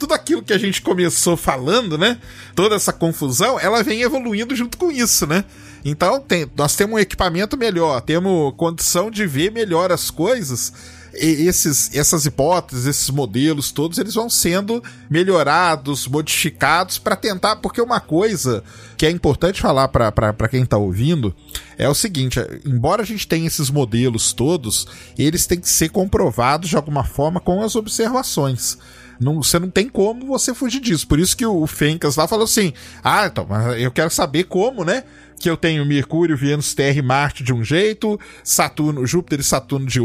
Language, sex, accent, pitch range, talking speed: Portuguese, male, Brazilian, 140-205 Hz, 175 wpm